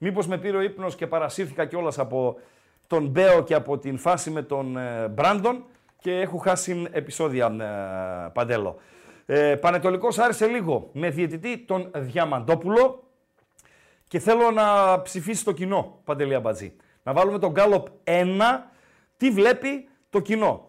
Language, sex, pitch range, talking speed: Greek, male, 145-210 Hz, 145 wpm